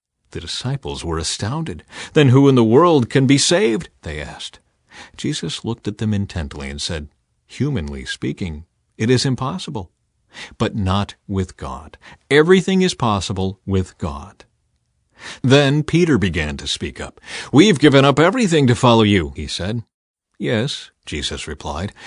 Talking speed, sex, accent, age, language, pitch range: 145 wpm, male, American, 50-69, English, 100-140 Hz